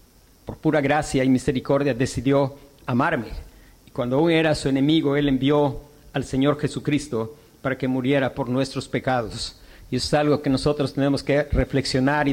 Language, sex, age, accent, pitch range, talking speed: Spanish, male, 50-69, Mexican, 130-150 Hz, 165 wpm